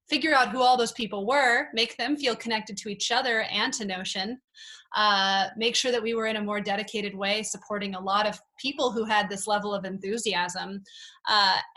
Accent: American